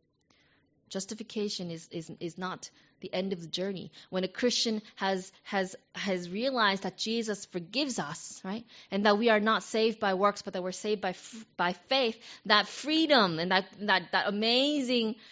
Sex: female